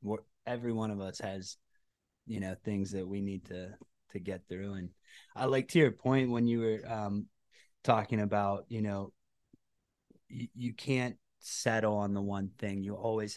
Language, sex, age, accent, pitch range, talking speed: English, male, 20-39, American, 100-115 Hz, 170 wpm